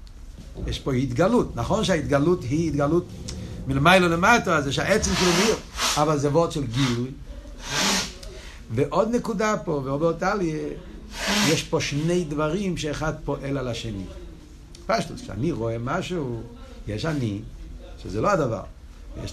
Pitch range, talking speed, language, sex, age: 115-175 Hz, 130 wpm, Hebrew, male, 60-79